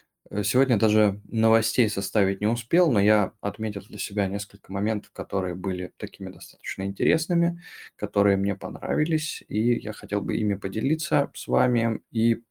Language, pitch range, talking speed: Russian, 100-115 Hz, 145 wpm